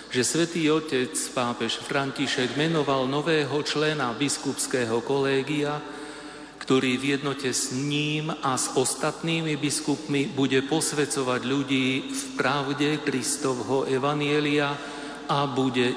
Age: 40-59